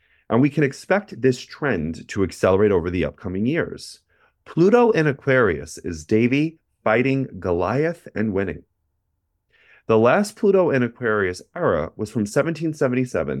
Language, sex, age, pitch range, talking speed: English, male, 30-49, 90-125 Hz, 135 wpm